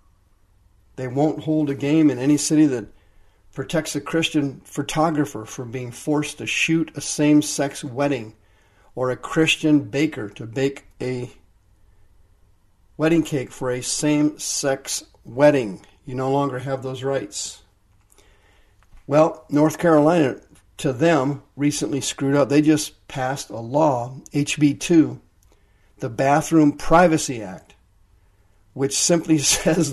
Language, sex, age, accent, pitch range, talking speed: English, male, 50-69, American, 105-150 Hz, 120 wpm